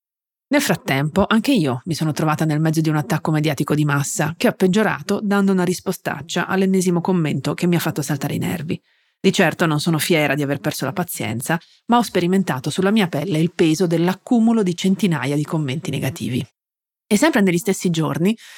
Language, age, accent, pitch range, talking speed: Italian, 30-49, native, 150-190 Hz, 190 wpm